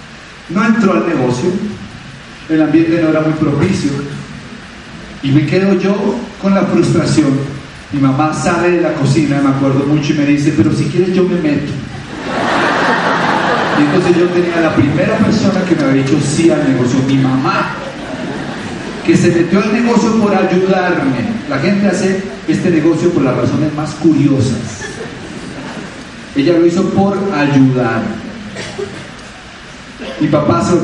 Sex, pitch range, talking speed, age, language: male, 150-195 Hz, 150 wpm, 40-59, Spanish